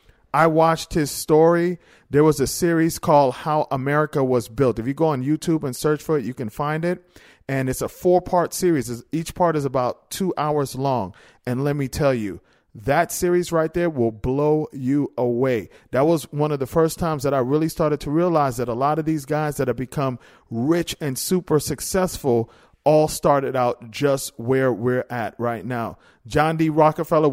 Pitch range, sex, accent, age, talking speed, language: 130-165 Hz, male, American, 40-59, 195 wpm, English